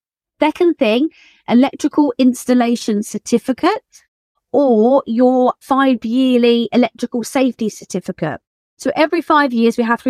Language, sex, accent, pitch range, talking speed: English, female, British, 195-265 Hz, 115 wpm